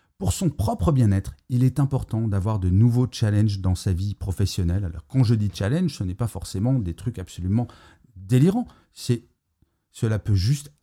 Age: 40-59